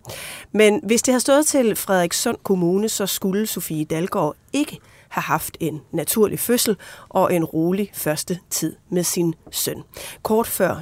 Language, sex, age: Danish, female, 30-49